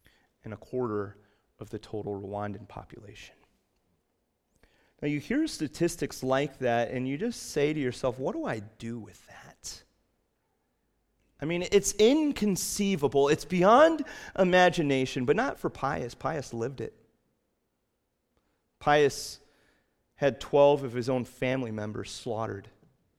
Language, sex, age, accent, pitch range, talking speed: English, male, 30-49, American, 110-150 Hz, 125 wpm